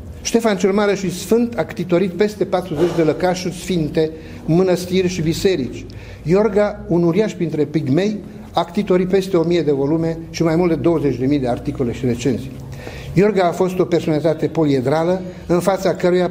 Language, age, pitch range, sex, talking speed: English, 60-79, 150-185 Hz, male, 160 wpm